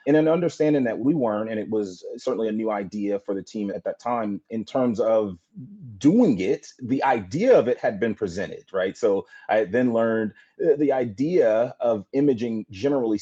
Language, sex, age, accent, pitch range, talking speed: English, male, 30-49, American, 105-170 Hz, 185 wpm